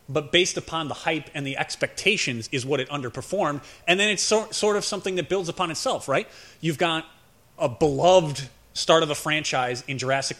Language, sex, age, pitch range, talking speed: English, male, 30-49, 135-175 Hz, 195 wpm